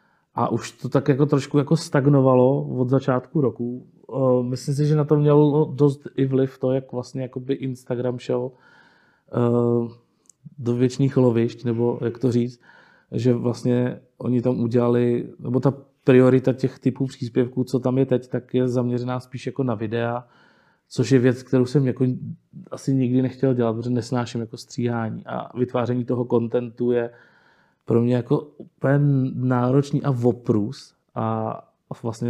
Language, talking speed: Czech, 150 wpm